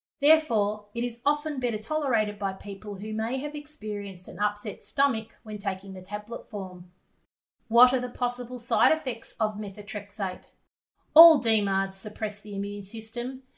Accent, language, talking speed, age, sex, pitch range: Australian, English, 150 wpm, 30-49, female, 205-250 Hz